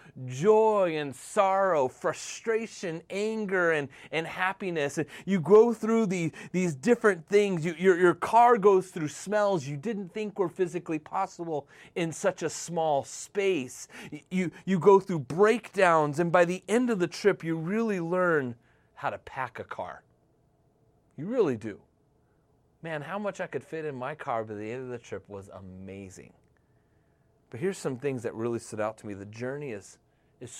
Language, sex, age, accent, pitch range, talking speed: English, male, 30-49, American, 140-190 Hz, 175 wpm